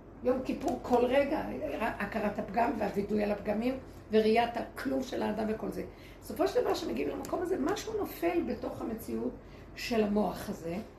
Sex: female